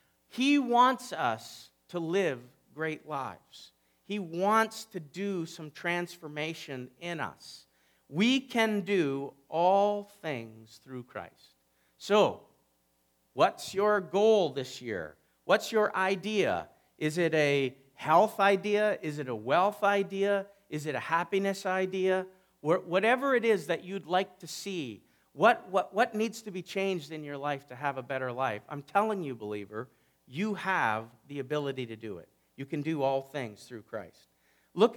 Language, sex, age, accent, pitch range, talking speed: English, male, 50-69, American, 135-200 Hz, 150 wpm